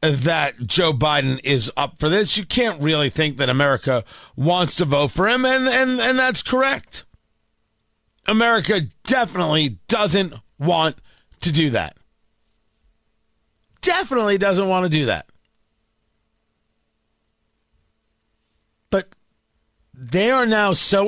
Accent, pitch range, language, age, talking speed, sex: American, 155-220 Hz, English, 40-59, 115 wpm, male